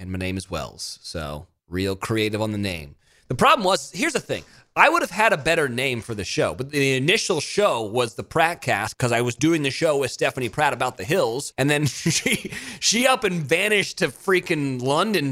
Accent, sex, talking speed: American, male, 225 wpm